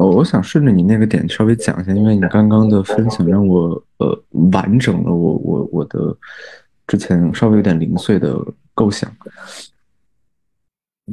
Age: 20-39